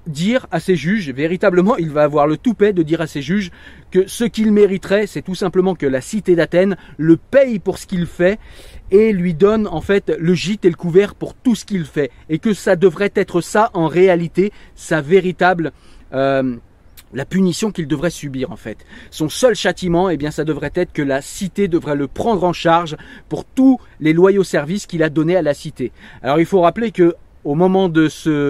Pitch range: 155-205 Hz